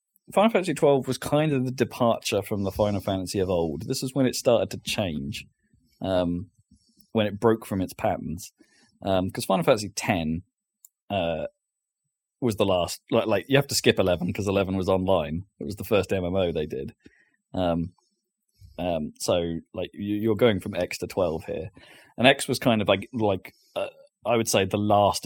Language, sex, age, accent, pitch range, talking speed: English, male, 20-39, British, 95-135 Hz, 190 wpm